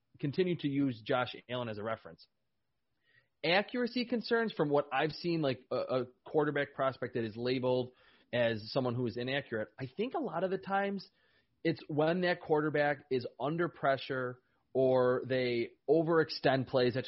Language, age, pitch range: English, 30-49, 120-155 Hz